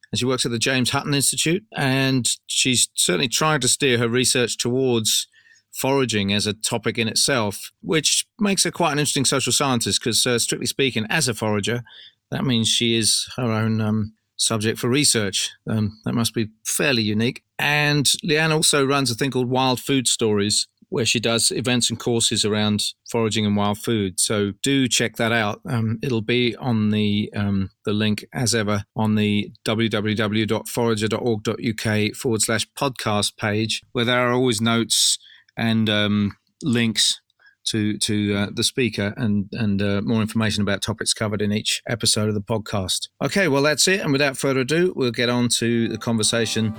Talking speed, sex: 175 wpm, male